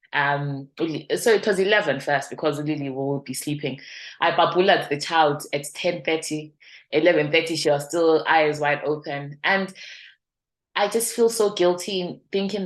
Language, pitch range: English, 145-180 Hz